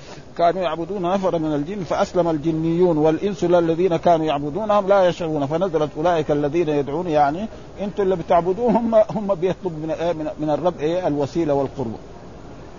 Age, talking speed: 50-69, 135 wpm